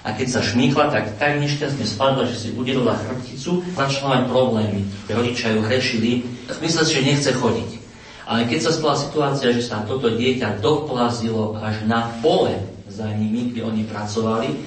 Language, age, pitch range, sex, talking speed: Slovak, 40-59, 105-125 Hz, male, 170 wpm